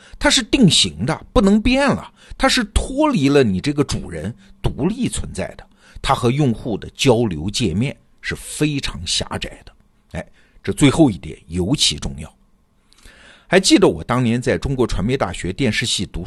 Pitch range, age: 105-170 Hz, 50-69